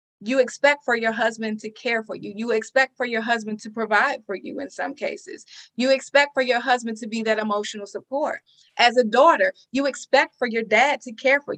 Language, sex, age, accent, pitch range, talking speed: English, female, 30-49, American, 215-265 Hz, 220 wpm